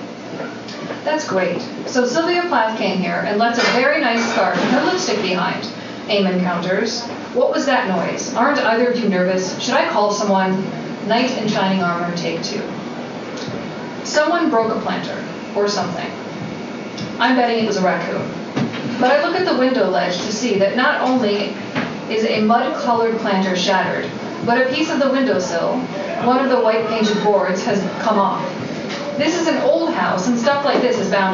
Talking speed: 180 wpm